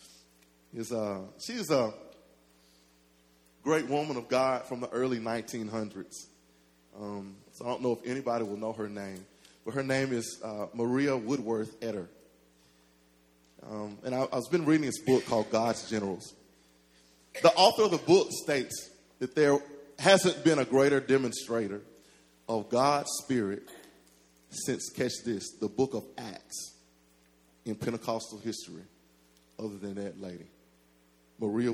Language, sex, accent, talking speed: English, male, American, 140 wpm